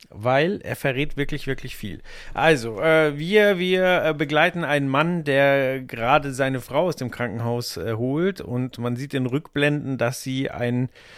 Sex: male